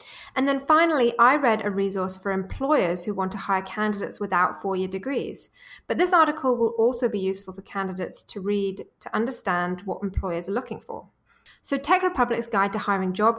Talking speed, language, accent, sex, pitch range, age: 190 wpm, English, British, female, 190-230 Hz, 20-39